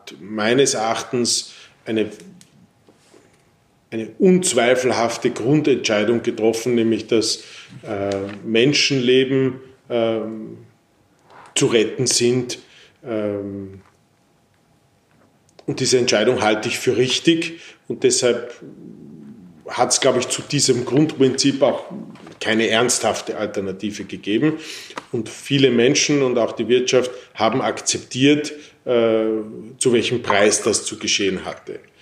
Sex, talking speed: male, 100 wpm